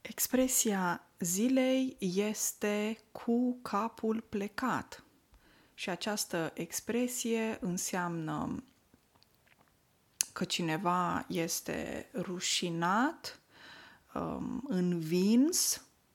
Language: Romanian